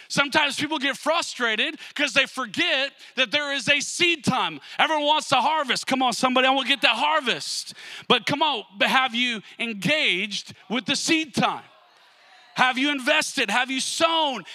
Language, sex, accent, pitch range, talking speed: English, male, American, 245-300 Hz, 175 wpm